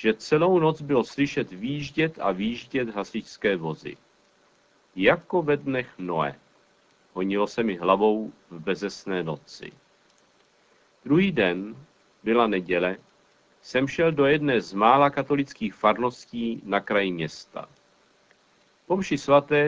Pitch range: 110-145 Hz